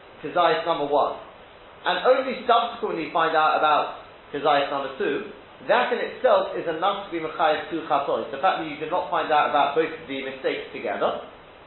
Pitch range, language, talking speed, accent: 155-245 Hz, English, 180 wpm, British